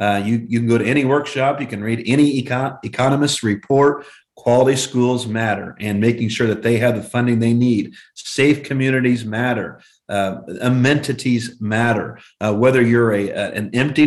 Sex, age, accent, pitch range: male, 40-59, American, 110-135 Hz